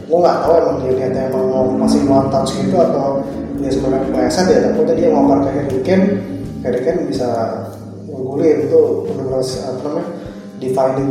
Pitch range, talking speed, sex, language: 130-140 Hz, 155 wpm, male, Indonesian